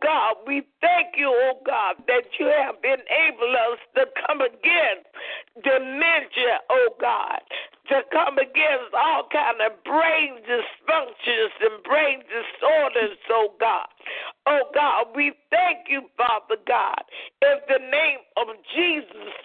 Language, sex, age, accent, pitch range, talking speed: English, female, 50-69, American, 260-380 Hz, 130 wpm